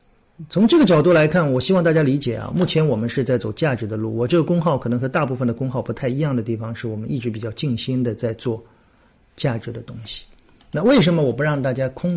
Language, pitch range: Chinese, 115-175 Hz